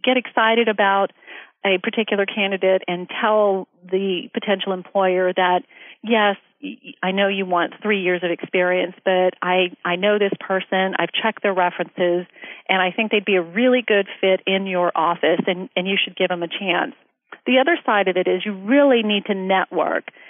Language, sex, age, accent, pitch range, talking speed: English, female, 40-59, American, 185-225 Hz, 185 wpm